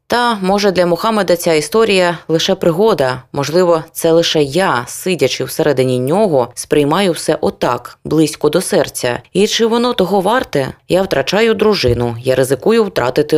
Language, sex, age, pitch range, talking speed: Ukrainian, female, 20-39, 130-175 Hz, 150 wpm